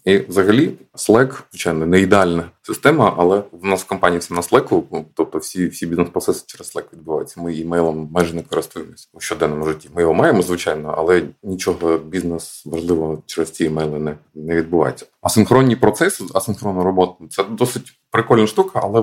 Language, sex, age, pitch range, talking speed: Ukrainian, male, 30-49, 85-110 Hz, 175 wpm